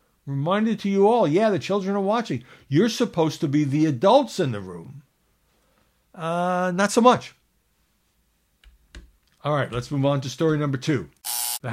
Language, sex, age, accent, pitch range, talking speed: English, male, 60-79, American, 115-165 Hz, 165 wpm